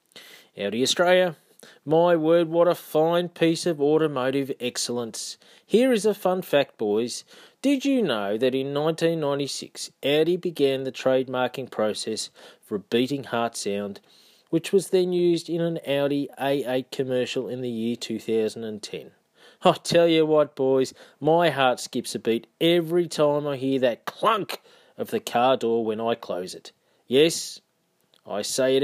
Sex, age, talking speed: male, 30-49, 155 wpm